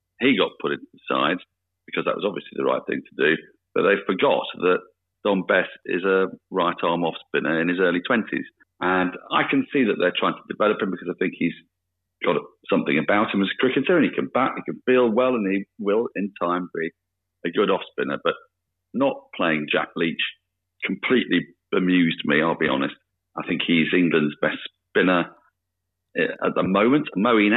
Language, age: English, 50-69